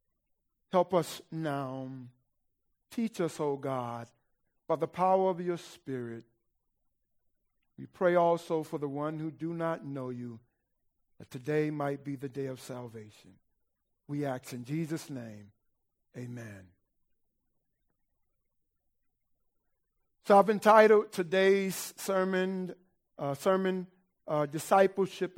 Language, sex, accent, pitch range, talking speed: English, male, American, 130-180 Hz, 110 wpm